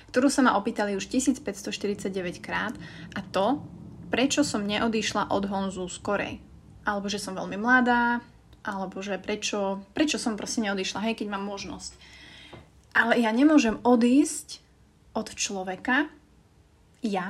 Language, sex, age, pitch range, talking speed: Slovak, female, 20-39, 195-240 Hz, 130 wpm